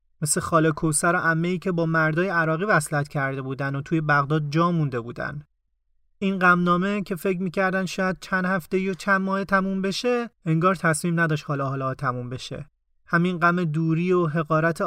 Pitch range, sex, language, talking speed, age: 150-185 Hz, male, Persian, 175 wpm, 30-49